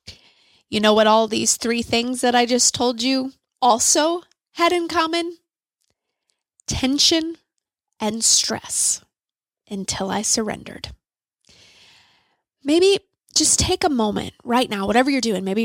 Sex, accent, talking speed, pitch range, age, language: female, American, 125 wpm, 220-265 Hz, 10-29, English